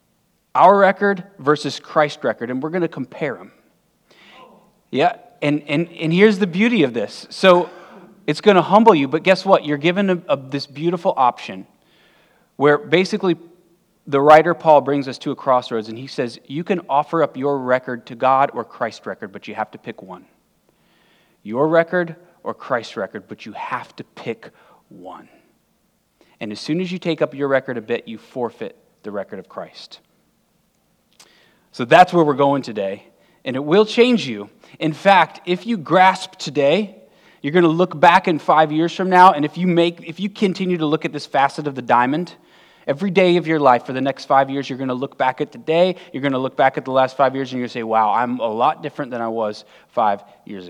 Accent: American